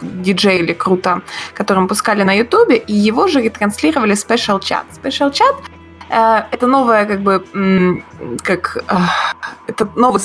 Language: Russian